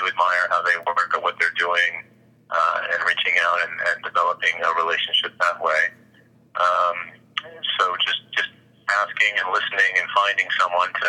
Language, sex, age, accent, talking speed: English, male, 30-49, American, 160 wpm